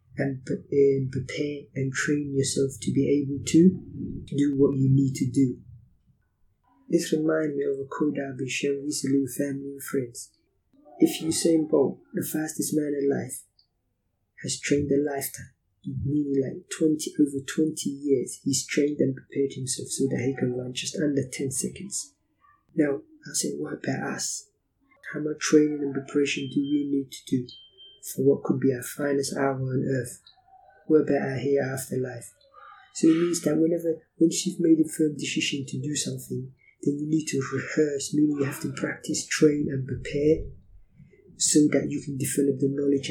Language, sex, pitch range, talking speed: English, male, 135-155 Hz, 175 wpm